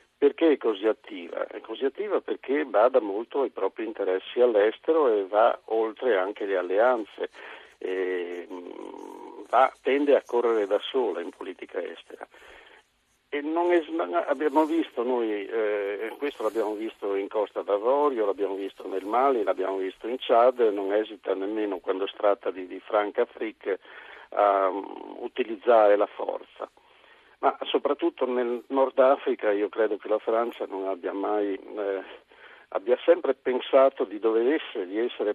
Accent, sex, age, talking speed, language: native, male, 50-69, 150 wpm, Italian